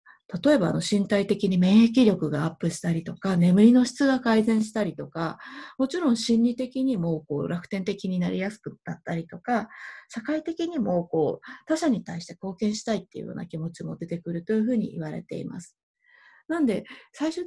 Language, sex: Japanese, female